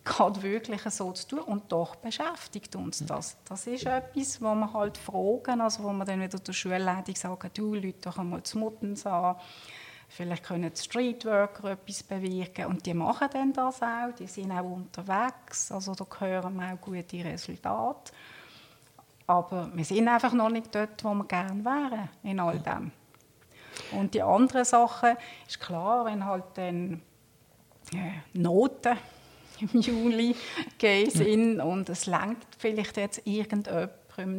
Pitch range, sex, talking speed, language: 185-225 Hz, female, 155 wpm, German